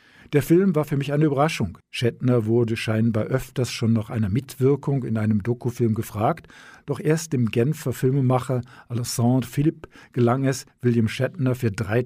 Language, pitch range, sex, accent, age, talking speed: German, 115-135 Hz, male, German, 50-69, 160 wpm